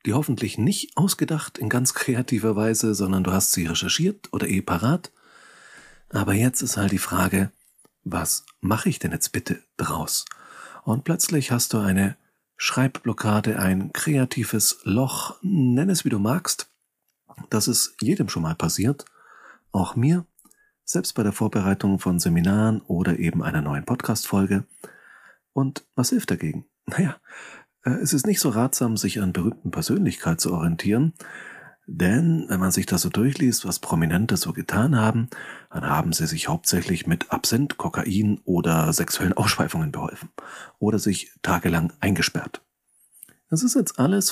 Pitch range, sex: 95-140 Hz, male